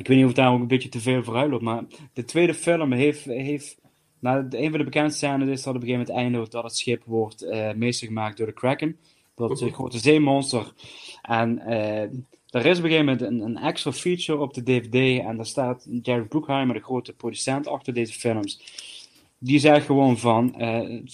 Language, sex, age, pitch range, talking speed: Dutch, male, 20-39, 115-145 Hz, 225 wpm